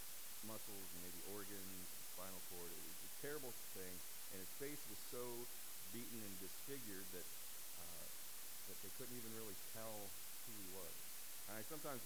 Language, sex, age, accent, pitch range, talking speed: English, male, 40-59, American, 90-115 Hz, 160 wpm